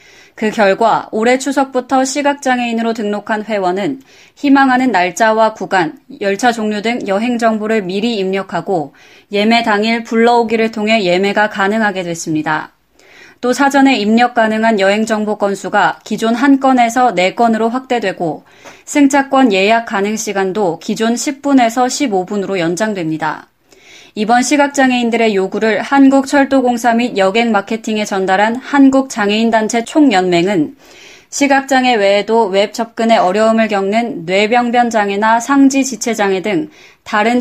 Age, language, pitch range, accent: 20-39, Korean, 200-250 Hz, native